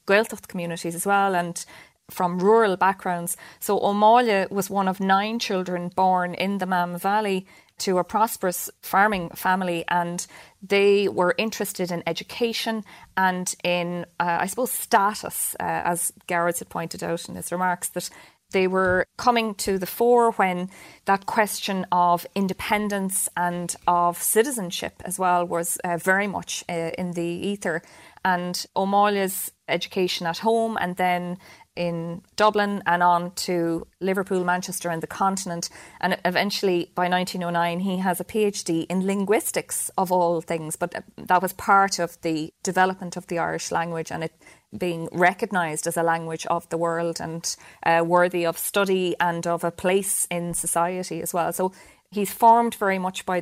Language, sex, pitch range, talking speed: English, female, 175-195 Hz, 160 wpm